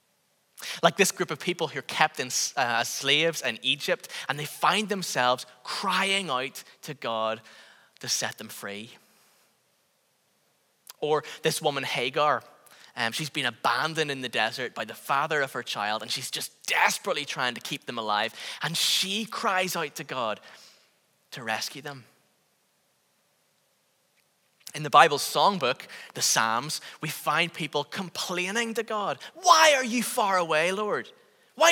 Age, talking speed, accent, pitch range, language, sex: 10-29, 150 wpm, British, 145-210 Hz, English, male